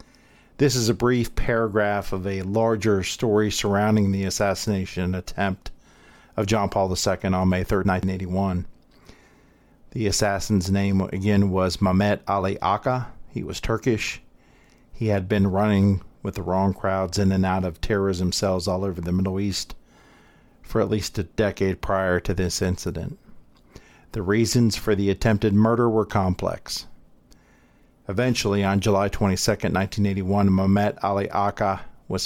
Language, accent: English, American